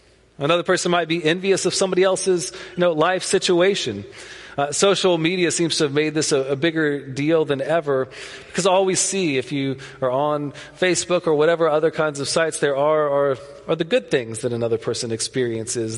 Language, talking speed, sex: English, 195 wpm, male